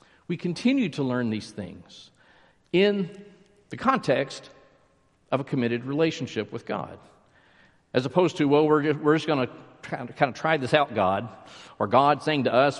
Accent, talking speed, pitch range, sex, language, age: American, 160 wpm, 110-140 Hz, male, English, 50-69